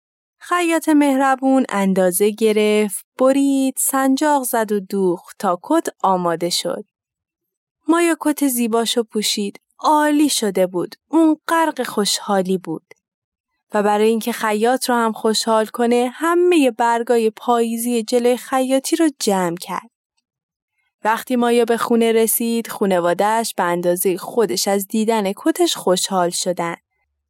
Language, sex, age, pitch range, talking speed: Persian, female, 20-39, 195-245 Hz, 120 wpm